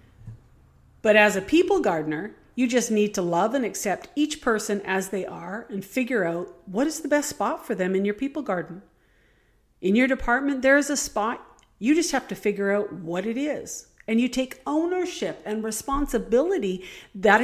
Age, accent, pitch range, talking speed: 50-69, American, 185-270 Hz, 185 wpm